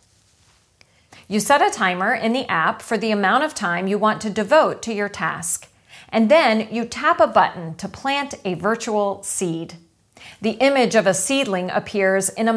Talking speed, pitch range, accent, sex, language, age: 180 wpm, 190-260 Hz, American, female, English, 30-49